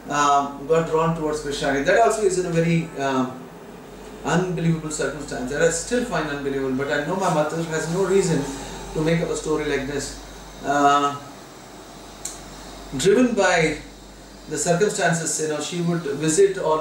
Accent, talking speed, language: native, 160 wpm, Hindi